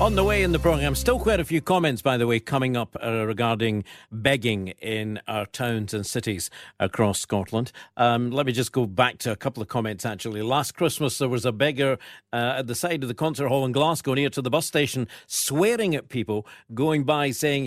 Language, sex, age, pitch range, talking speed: English, male, 60-79, 115-155 Hz, 220 wpm